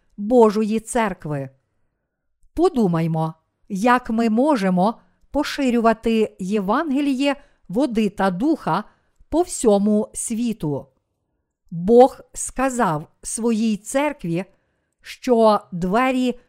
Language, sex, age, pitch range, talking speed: Ukrainian, female, 50-69, 190-250 Hz, 75 wpm